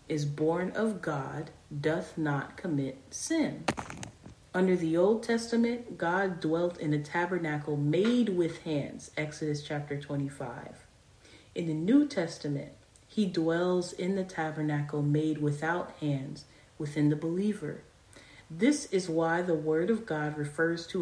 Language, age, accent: English, 40-59, American